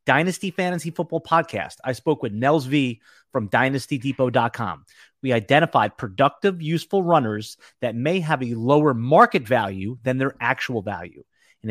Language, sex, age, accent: English, male, 30-49, American